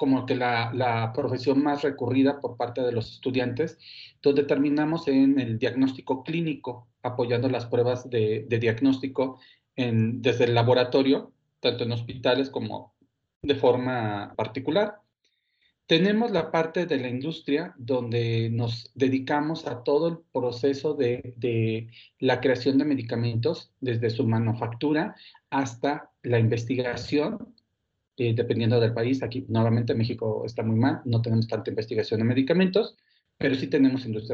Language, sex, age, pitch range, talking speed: Spanish, male, 40-59, 120-145 Hz, 140 wpm